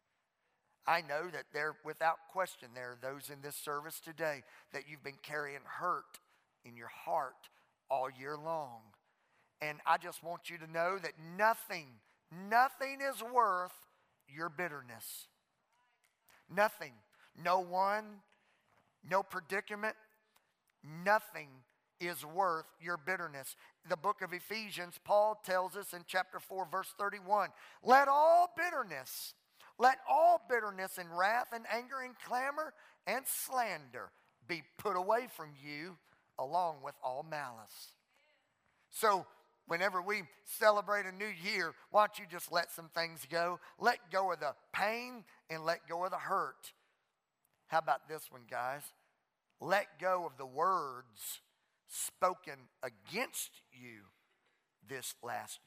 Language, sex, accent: English, male, American